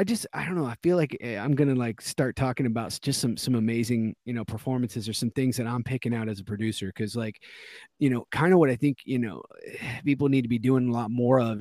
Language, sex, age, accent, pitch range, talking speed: English, male, 30-49, American, 110-140 Hz, 270 wpm